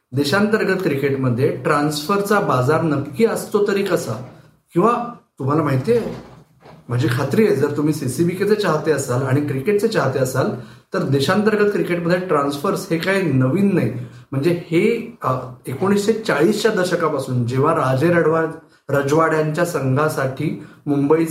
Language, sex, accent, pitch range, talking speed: Marathi, male, native, 135-180 Hz, 95 wpm